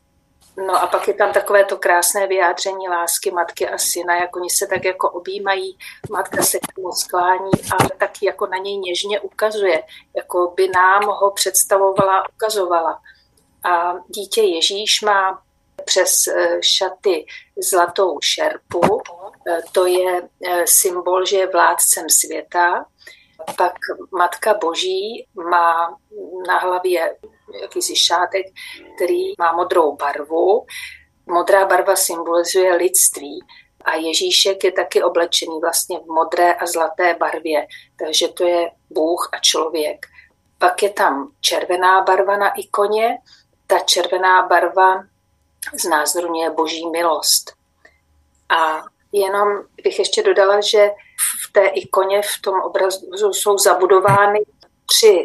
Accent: native